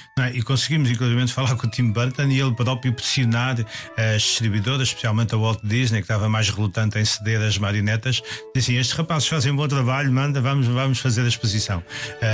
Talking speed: 205 wpm